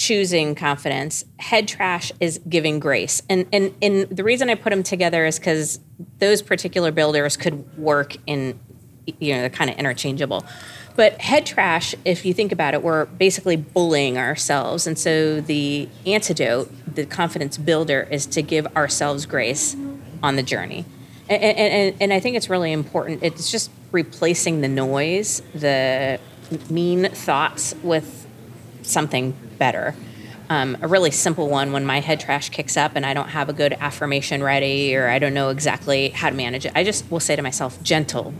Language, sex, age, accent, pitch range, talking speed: English, female, 40-59, American, 140-175 Hz, 175 wpm